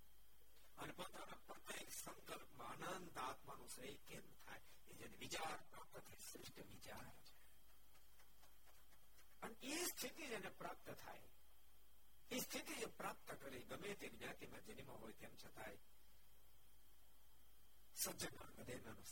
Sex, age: male, 60-79